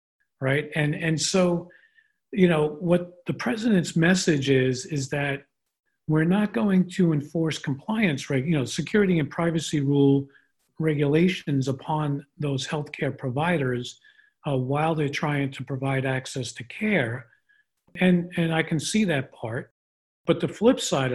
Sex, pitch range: male, 135-170 Hz